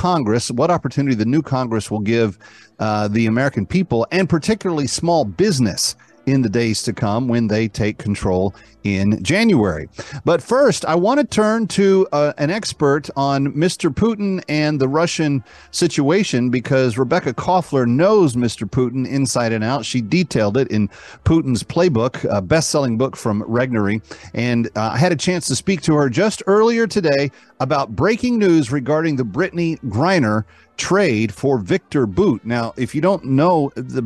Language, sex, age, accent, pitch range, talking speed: English, male, 40-59, American, 110-150 Hz, 165 wpm